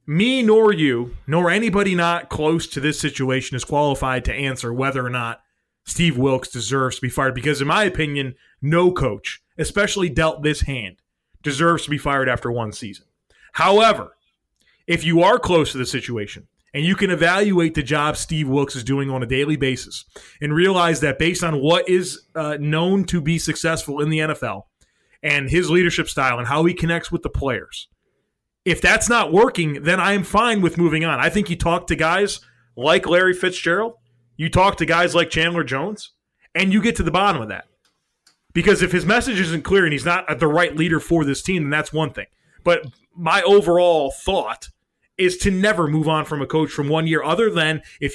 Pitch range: 140-175 Hz